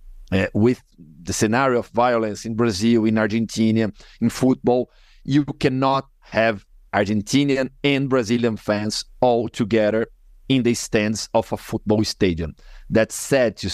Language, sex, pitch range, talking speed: English, male, 110-145 Hz, 135 wpm